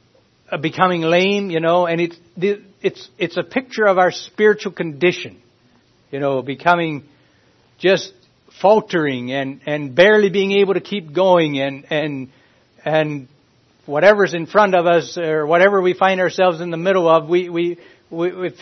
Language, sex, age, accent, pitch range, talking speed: English, male, 60-79, American, 145-185 Hz, 150 wpm